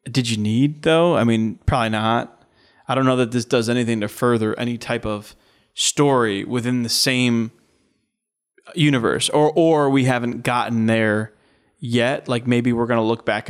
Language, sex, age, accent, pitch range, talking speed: English, male, 20-39, American, 115-135 Hz, 175 wpm